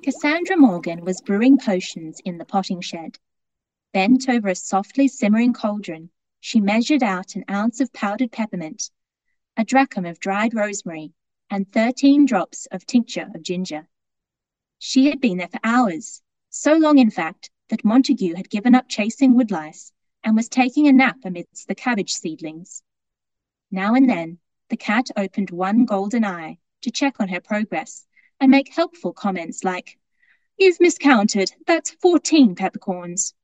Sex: female